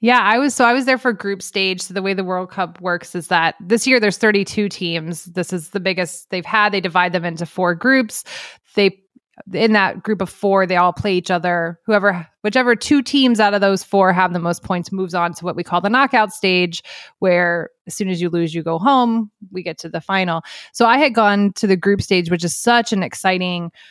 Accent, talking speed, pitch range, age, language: American, 240 wpm, 180-225 Hz, 20-39, English